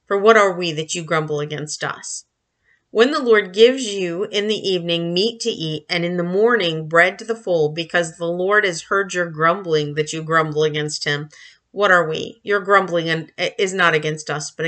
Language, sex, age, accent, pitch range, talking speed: English, female, 40-59, American, 160-225 Hz, 205 wpm